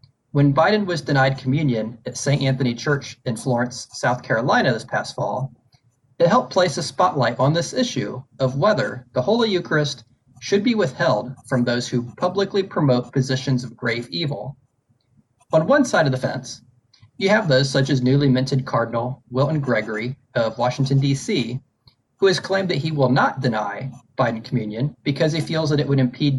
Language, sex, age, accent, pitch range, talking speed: English, male, 30-49, American, 125-145 Hz, 175 wpm